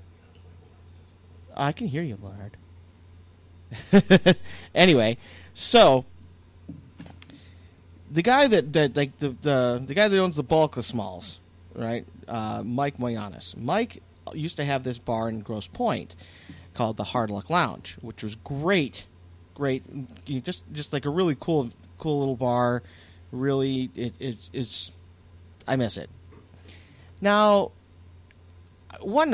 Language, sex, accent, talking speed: English, male, American, 125 wpm